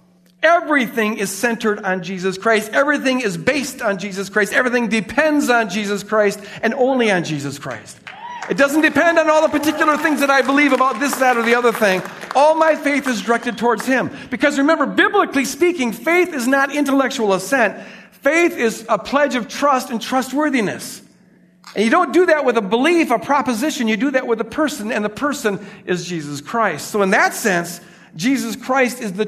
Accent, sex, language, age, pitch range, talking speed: American, male, English, 50-69, 200-265 Hz, 195 wpm